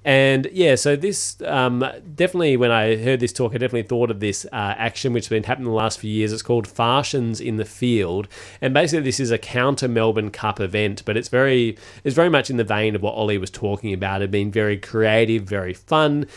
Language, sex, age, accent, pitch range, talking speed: English, male, 30-49, Australian, 105-125 Hz, 225 wpm